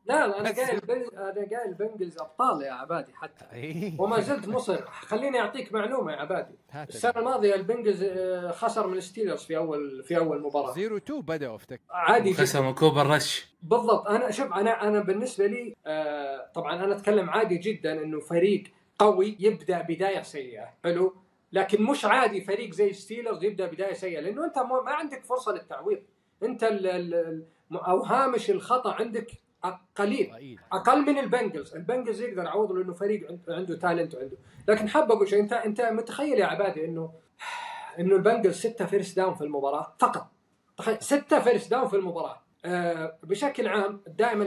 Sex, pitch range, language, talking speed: male, 170-220 Hz, Arabic, 155 wpm